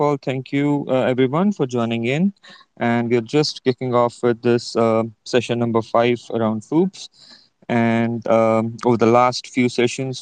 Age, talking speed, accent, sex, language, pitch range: 30-49, 160 wpm, Indian, male, English, 110-130 Hz